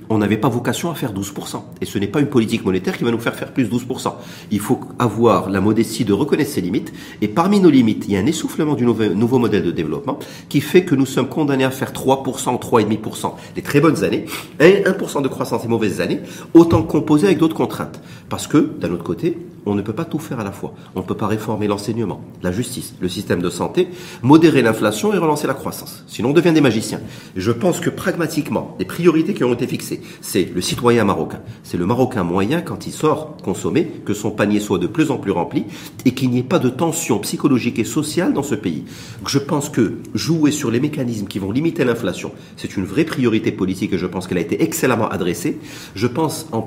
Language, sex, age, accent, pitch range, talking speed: French, male, 40-59, French, 110-155 Hz, 230 wpm